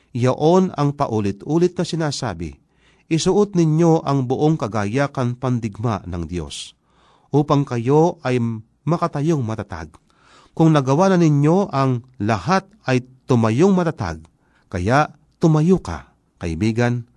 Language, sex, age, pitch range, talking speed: Filipino, male, 40-59, 105-160 Hz, 110 wpm